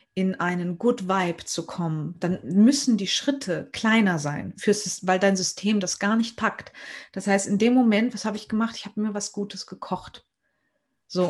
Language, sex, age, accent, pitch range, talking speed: German, female, 30-49, German, 185-220 Hz, 185 wpm